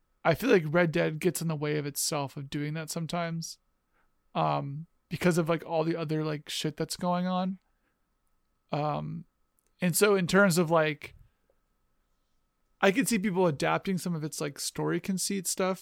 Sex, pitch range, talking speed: male, 145-175 Hz, 175 wpm